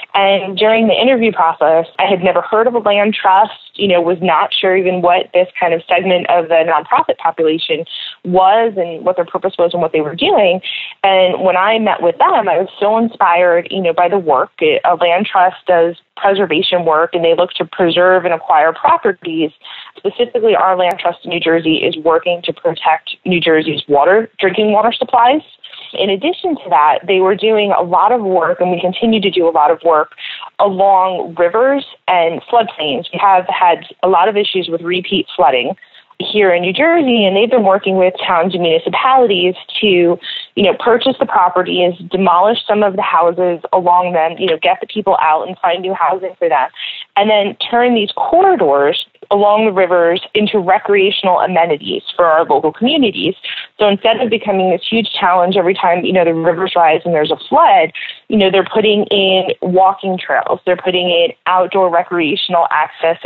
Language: English